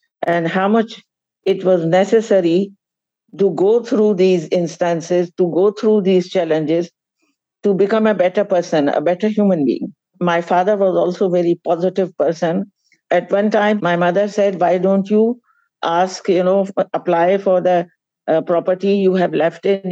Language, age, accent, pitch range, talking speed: English, 60-79, Indian, 170-200 Hz, 165 wpm